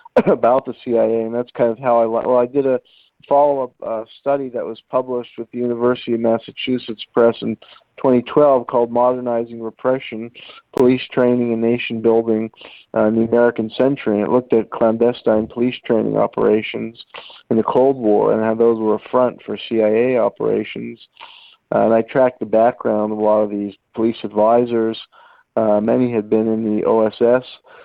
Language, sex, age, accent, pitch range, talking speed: English, male, 50-69, American, 110-125 Hz, 175 wpm